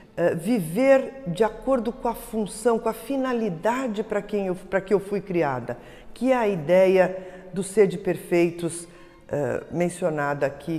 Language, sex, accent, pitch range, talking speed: Portuguese, female, Brazilian, 165-220 Hz, 135 wpm